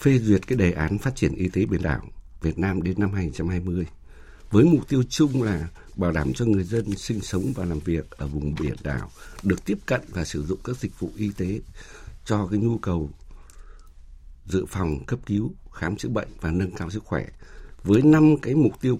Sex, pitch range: male, 85-120 Hz